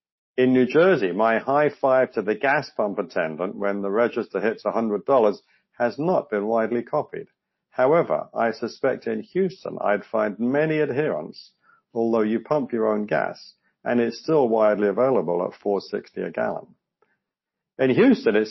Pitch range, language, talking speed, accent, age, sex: 115-145 Hz, English, 155 wpm, British, 50-69, male